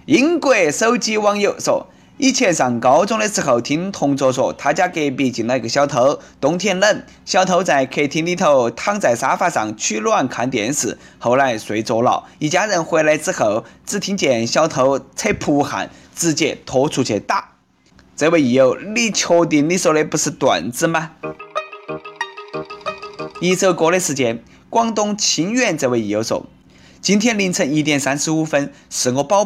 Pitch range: 125-195 Hz